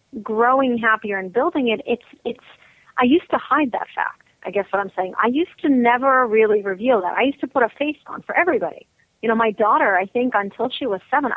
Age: 40-59